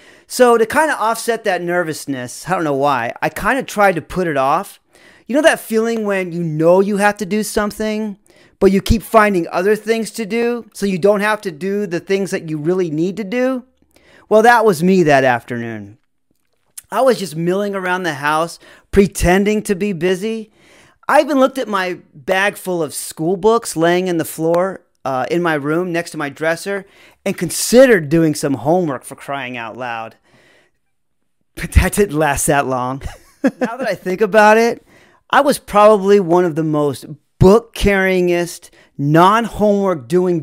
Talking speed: 185 wpm